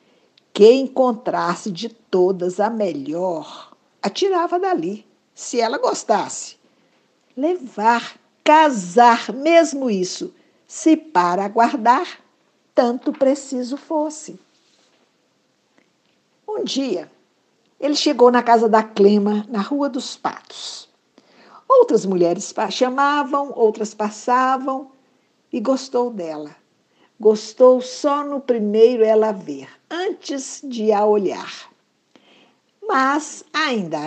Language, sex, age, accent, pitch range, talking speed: Portuguese, female, 60-79, Brazilian, 205-280 Hz, 90 wpm